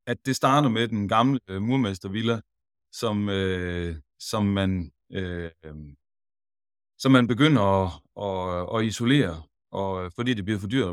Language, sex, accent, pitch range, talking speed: Danish, male, native, 85-115 Hz, 145 wpm